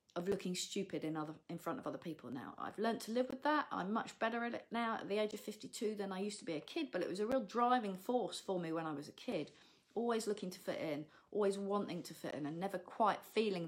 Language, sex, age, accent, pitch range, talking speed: English, female, 40-59, British, 190-260 Hz, 275 wpm